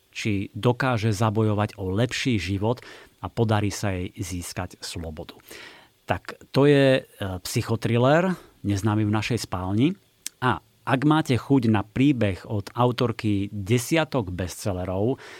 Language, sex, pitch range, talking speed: Slovak, male, 100-120 Hz, 115 wpm